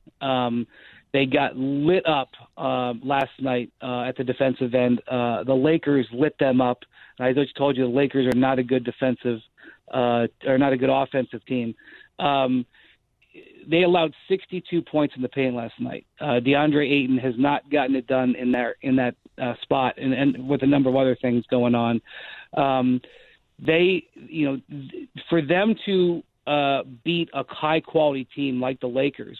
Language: English